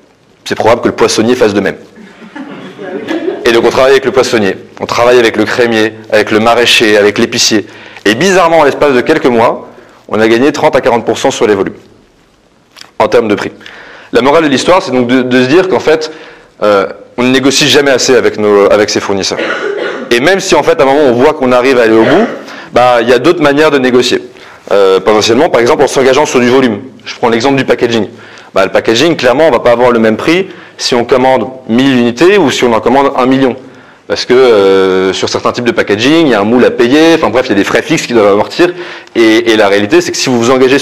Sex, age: male, 30-49